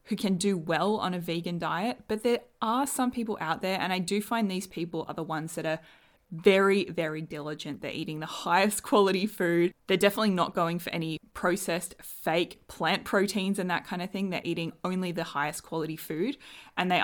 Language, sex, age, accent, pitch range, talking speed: English, female, 20-39, Australian, 165-205 Hz, 210 wpm